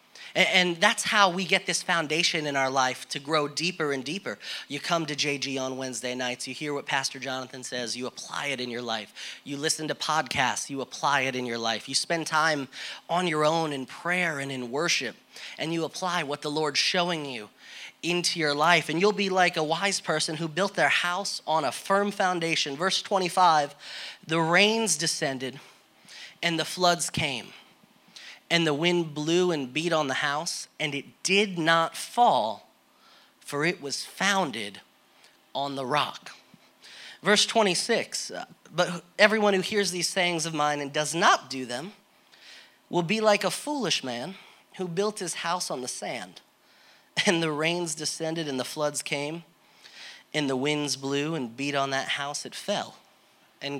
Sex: male